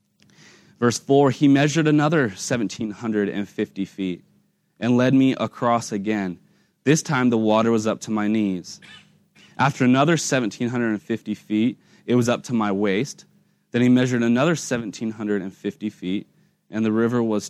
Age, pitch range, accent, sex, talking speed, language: 20-39, 105-145 Hz, American, male, 140 wpm, English